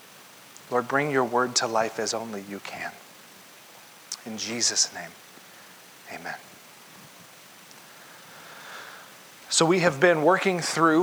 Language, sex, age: English, male, 40-59